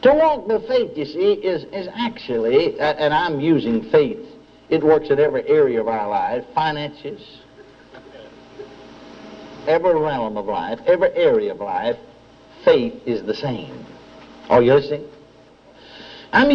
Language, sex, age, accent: English, male, 60-79, American